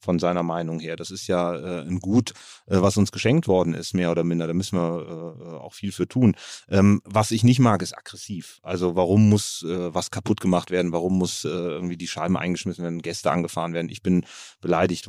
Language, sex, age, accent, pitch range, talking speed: German, male, 30-49, German, 90-100 Hz, 225 wpm